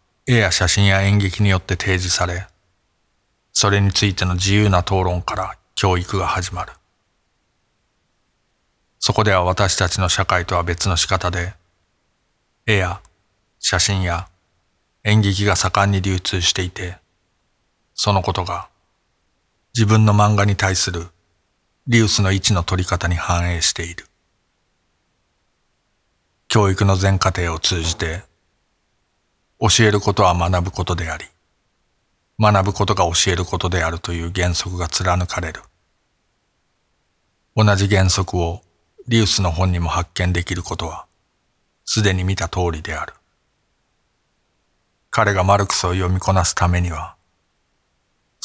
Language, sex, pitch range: Japanese, male, 90-100 Hz